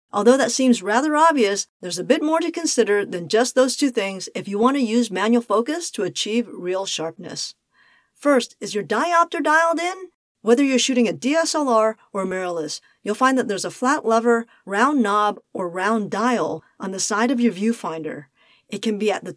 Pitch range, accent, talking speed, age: 195-250 Hz, American, 195 wpm, 40-59